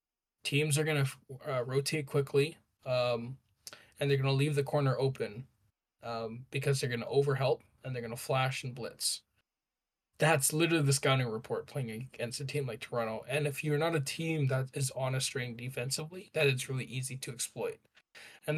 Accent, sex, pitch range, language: American, male, 125-150 Hz, English